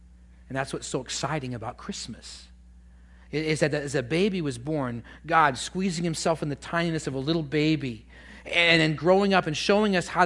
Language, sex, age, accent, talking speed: English, male, 40-59, American, 185 wpm